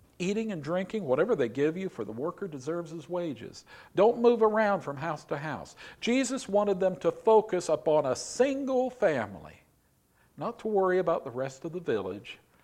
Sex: male